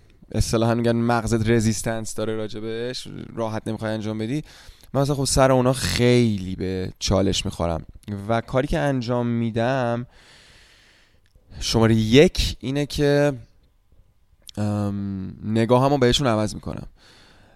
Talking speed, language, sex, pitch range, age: 120 wpm, Persian, male, 100-130 Hz, 20-39